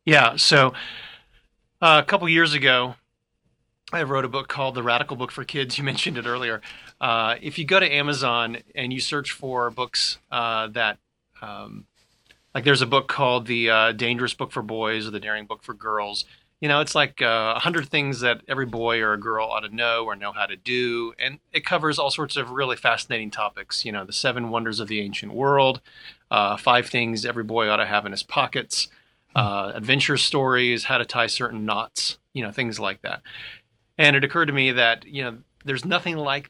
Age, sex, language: 30-49, male, English